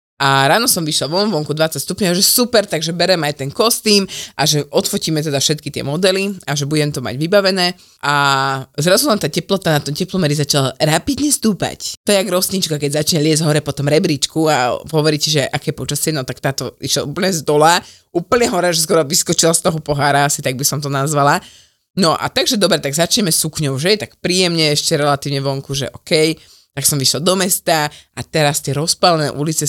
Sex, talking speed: female, 205 wpm